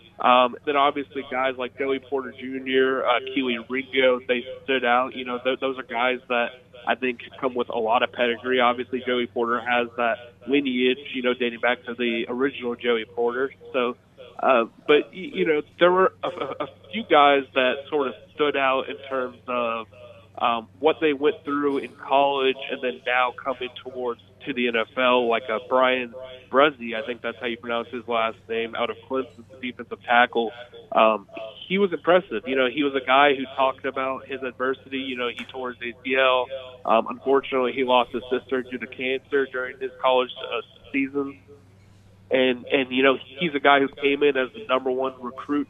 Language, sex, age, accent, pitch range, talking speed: English, male, 20-39, American, 120-135 Hz, 190 wpm